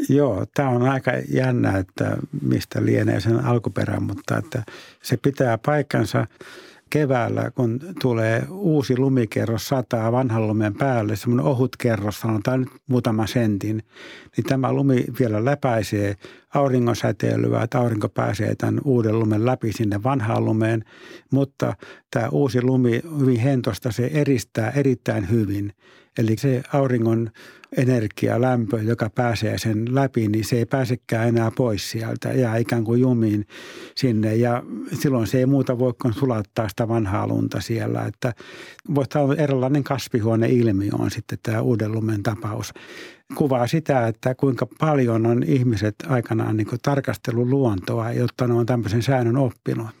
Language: Finnish